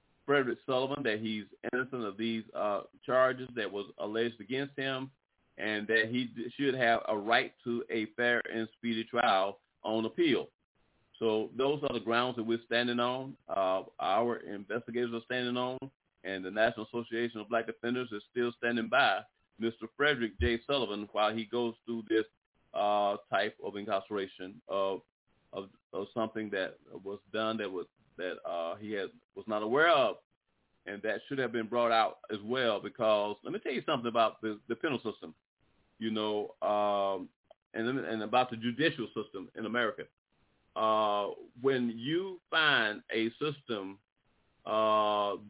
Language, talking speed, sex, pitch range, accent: English, 160 wpm, male, 110-130 Hz, American